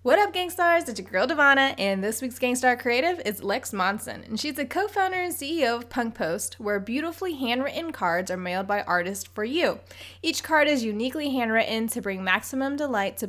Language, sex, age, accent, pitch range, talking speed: English, female, 20-39, American, 195-250 Hz, 200 wpm